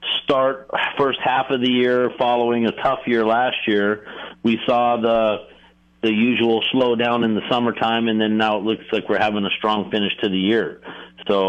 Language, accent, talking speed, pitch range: English, American, 190 wpm, 100-115 Hz